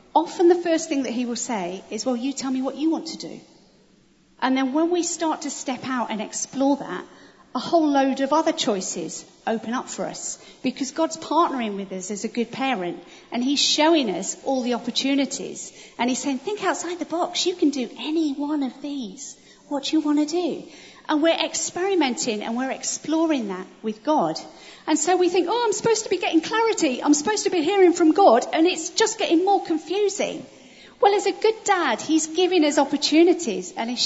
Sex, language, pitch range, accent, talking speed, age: female, English, 215-320 Hz, British, 210 wpm, 40-59